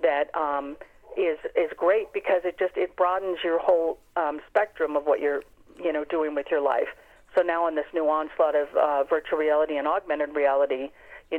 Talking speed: 195 wpm